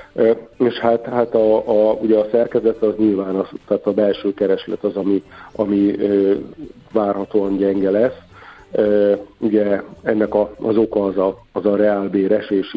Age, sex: 50-69, male